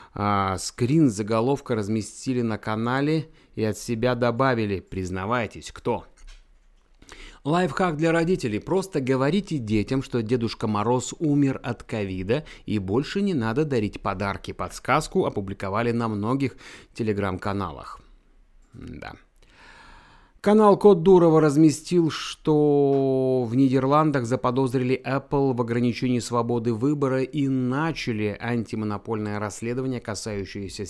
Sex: male